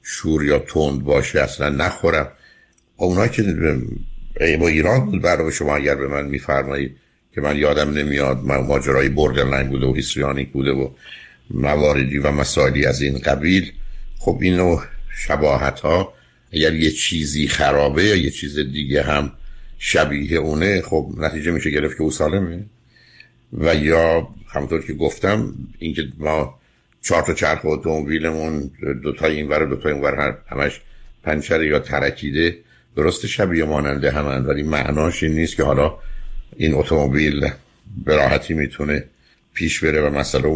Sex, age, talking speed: male, 60-79, 145 wpm